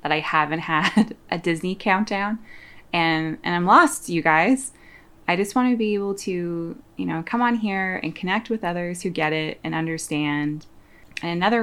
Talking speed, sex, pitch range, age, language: 180 wpm, female, 155-195 Hz, 20-39, English